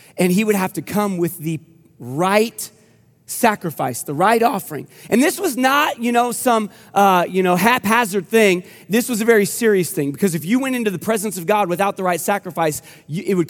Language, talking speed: English, 210 wpm